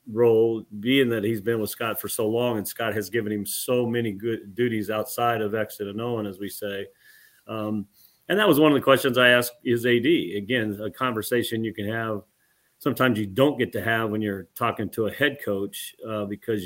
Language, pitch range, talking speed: English, 105-120 Hz, 215 wpm